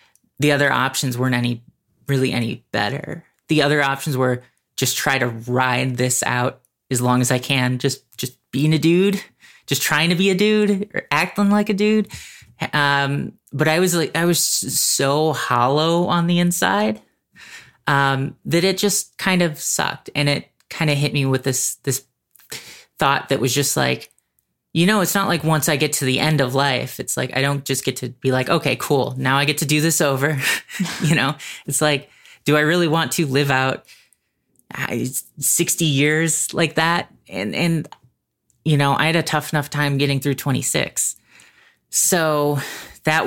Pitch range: 130-160 Hz